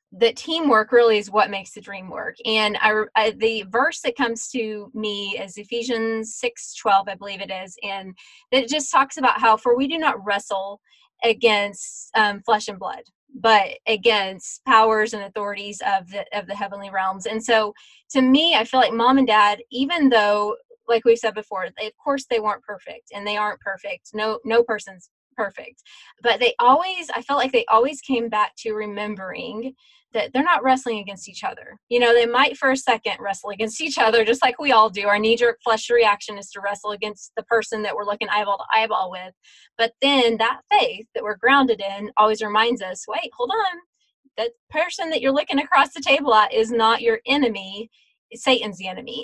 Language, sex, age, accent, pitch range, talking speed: English, female, 20-39, American, 210-250 Hz, 200 wpm